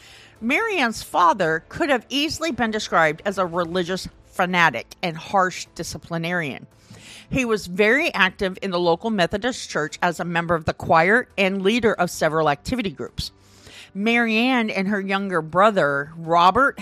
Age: 50-69